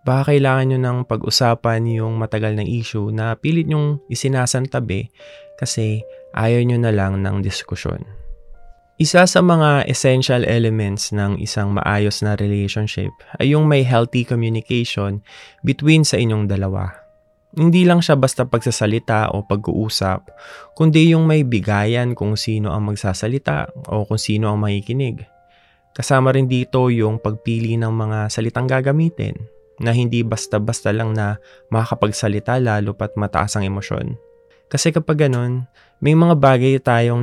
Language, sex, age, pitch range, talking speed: Filipino, male, 20-39, 105-135 Hz, 140 wpm